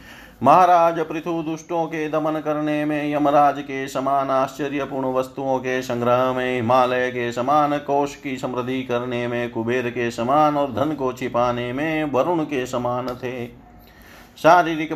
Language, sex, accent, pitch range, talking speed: Hindi, male, native, 125-150 Hz, 145 wpm